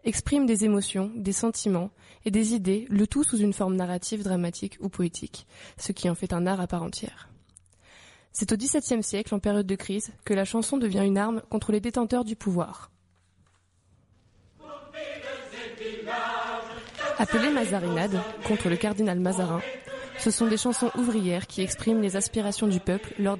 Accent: French